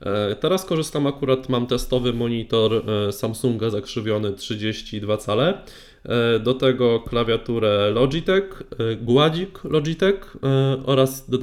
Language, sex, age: Polish, male, 20-39